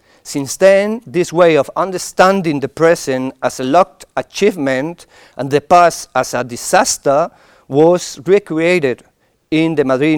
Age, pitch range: 50-69, 135-170 Hz